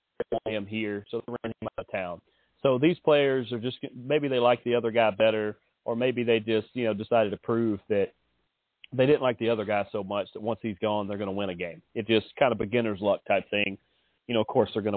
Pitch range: 105-130 Hz